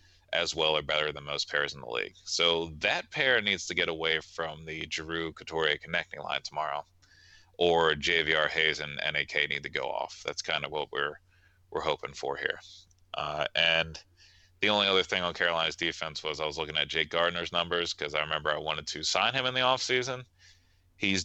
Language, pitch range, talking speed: English, 80-90 Hz, 205 wpm